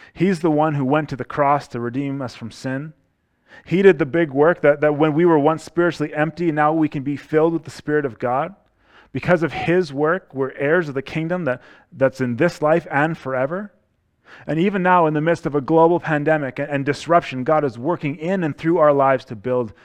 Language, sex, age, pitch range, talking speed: English, male, 30-49, 120-155 Hz, 225 wpm